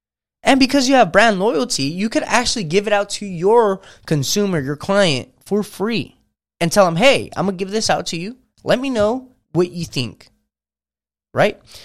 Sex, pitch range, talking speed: male, 135-205 Hz, 185 wpm